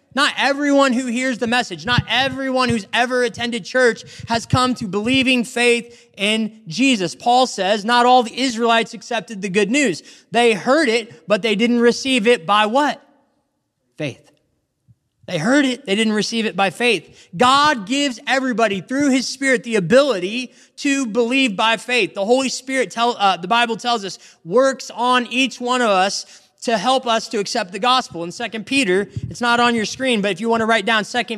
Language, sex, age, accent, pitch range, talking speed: English, male, 20-39, American, 215-255 Hz, 185 wpm